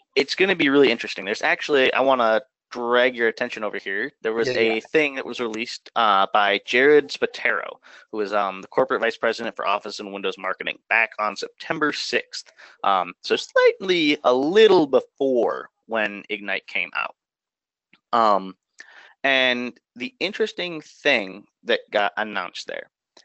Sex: male